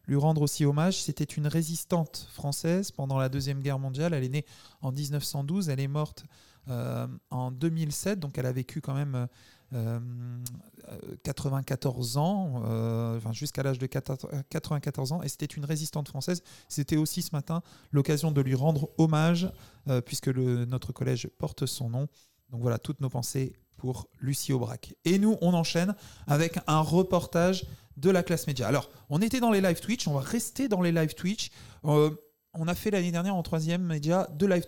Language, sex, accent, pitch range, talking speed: French, male, French, 130-170 Hz, 185 wpm